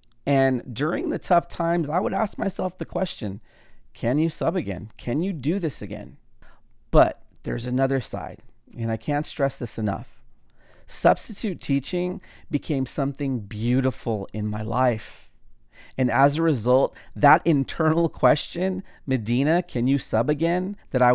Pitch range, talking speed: 120-160 Hz, 150 wpm